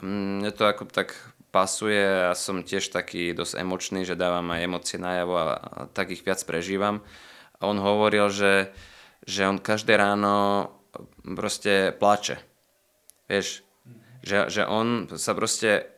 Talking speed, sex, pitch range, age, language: 145 wpm, male, 95-105 Hz, 20-39, Czech